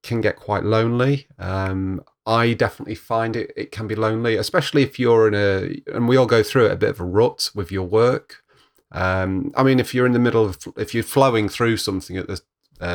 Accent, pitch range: British, 95-115 Hz